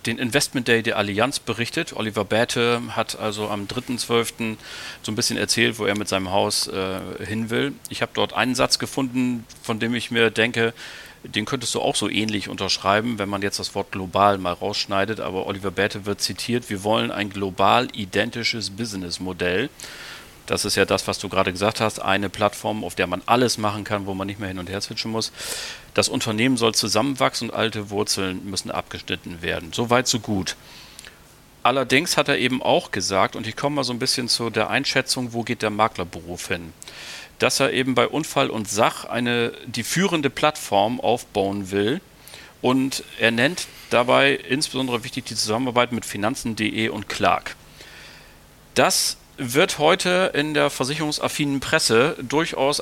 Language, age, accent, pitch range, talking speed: German, 40-59, German, 100-125 Hz, 175 wpm